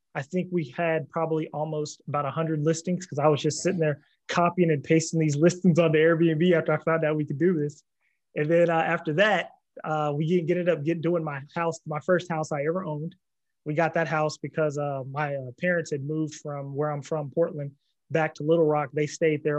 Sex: male